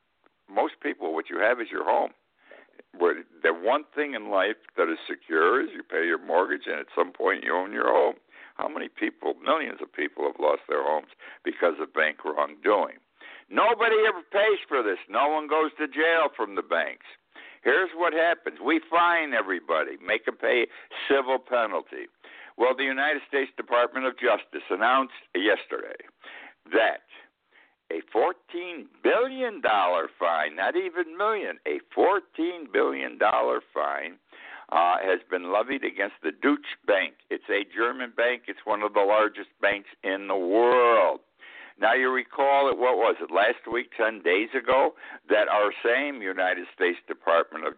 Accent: American